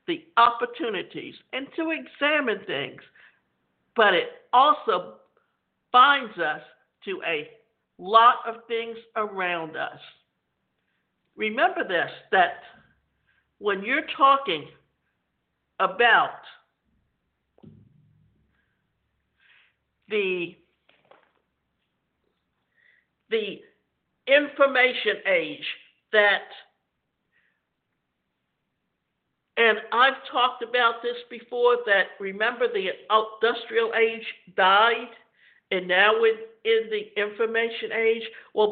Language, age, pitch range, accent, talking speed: English, 60-79, 220-285 Hz, American, 75 wpm